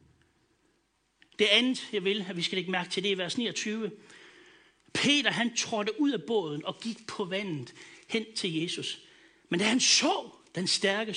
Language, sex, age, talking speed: Danish, male, 60-79, 175 wpm